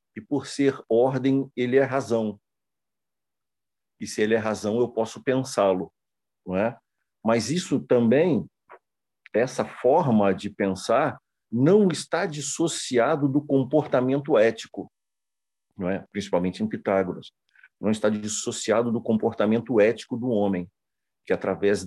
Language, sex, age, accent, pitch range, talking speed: Portuguese, male, 40-59, Brazilian, 100-135 Hz, 125 wpm